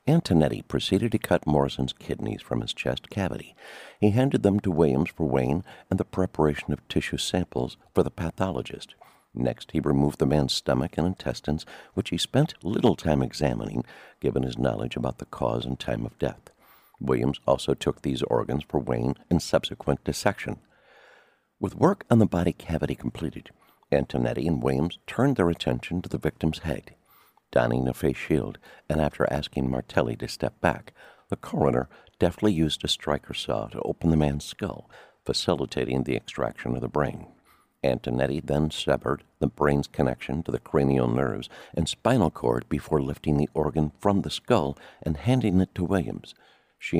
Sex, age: male, 60-79